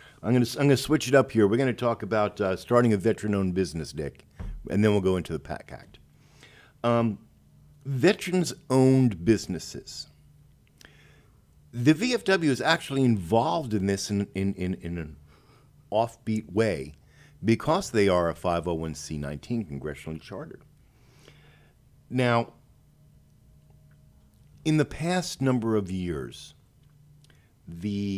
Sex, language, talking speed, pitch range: male, English, 125 wpm, 95-135 Hz